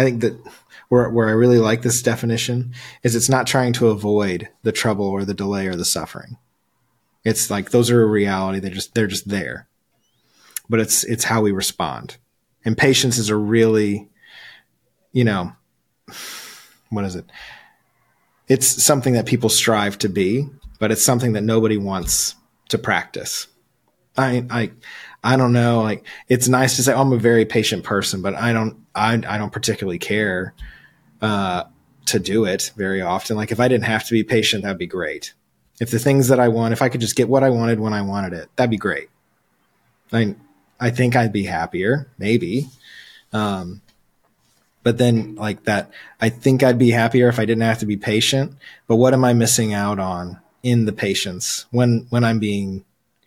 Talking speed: 190 wpm